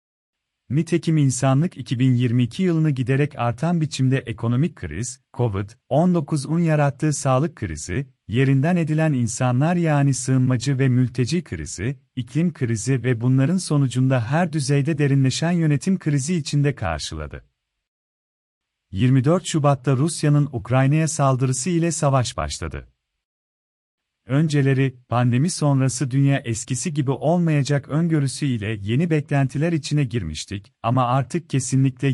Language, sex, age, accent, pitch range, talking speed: Turkish, male, 40-59, native, 125-155 Hz, 105 wpm